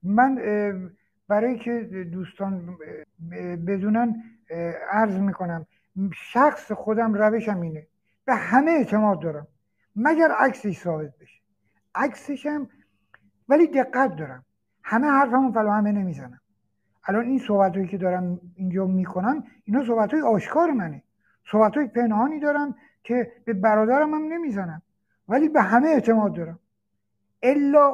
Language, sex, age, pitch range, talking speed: Persian, male, 60-79, 180-250 Hz, 115 wpm